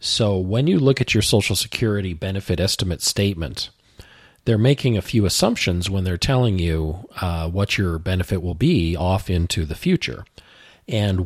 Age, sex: 40-59, male